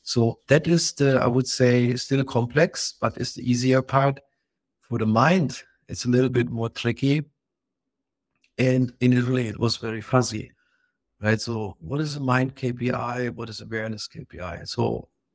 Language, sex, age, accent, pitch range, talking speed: English, male, 60-79, German, 110-130 Hz, 165 wpm